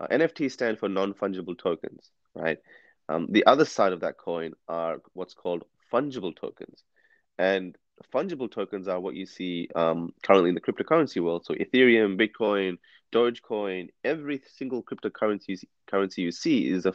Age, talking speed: 20-39, 150 wpm